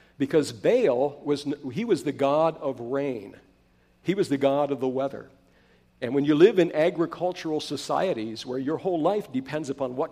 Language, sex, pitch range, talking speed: English, male, 135-170 Hz, 180 wpm